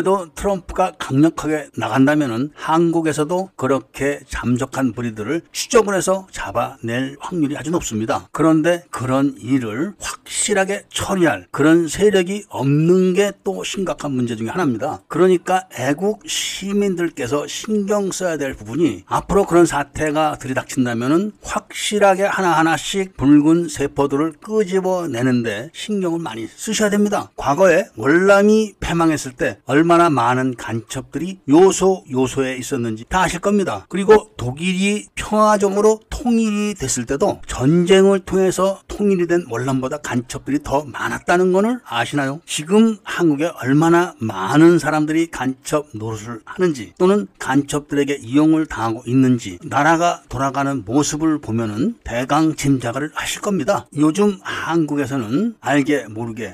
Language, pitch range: Korean, 135-185 Hz